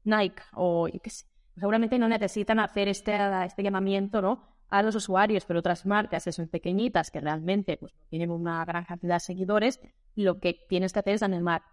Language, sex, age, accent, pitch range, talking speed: Spanish, female, 20-39, Spanish, 180-220 Hz, 200 wpm